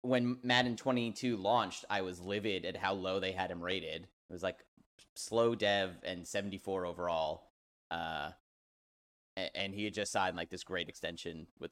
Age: 30-49